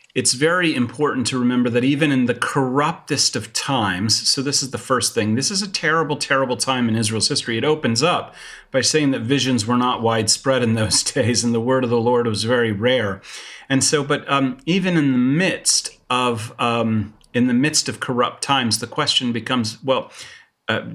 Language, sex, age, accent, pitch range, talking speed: English, male, 40-59, American, 115-135 Hz, 200 wpm